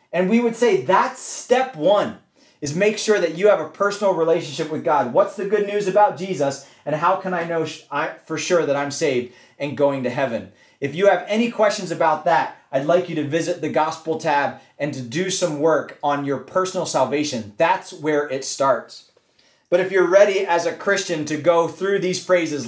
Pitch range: 145-195 Hz